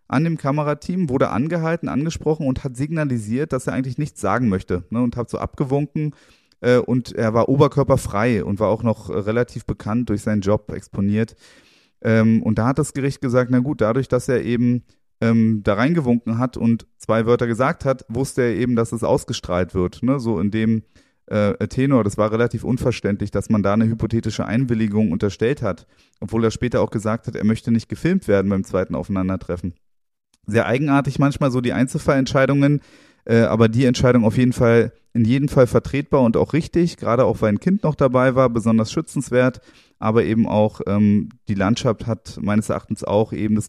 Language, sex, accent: German, male, German